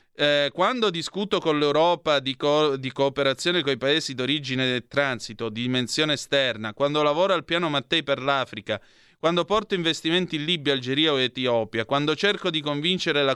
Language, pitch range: Italian, 120-165 Hz